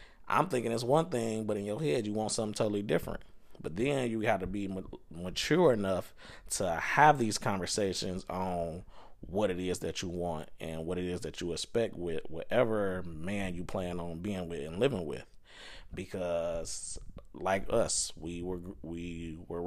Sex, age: male, 20-39